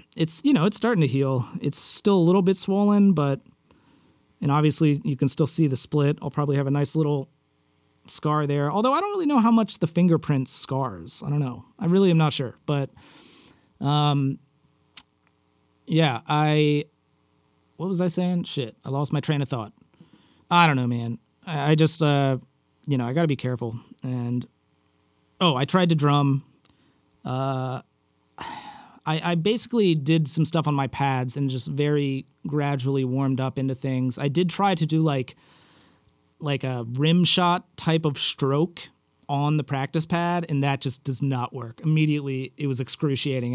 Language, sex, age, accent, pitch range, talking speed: English, male, 30-49, American, 135-160 Hz, 175 wpm